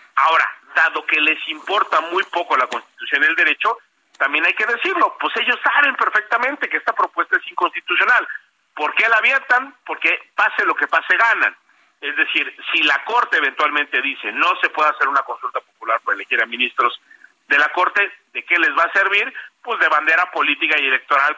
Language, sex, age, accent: Spanish, male, 40-59, Mexican